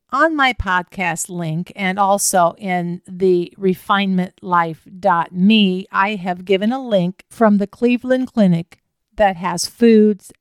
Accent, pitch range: American, 180-240 Hz